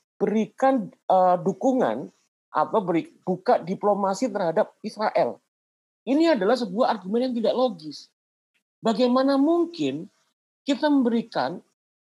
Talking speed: 90 wpm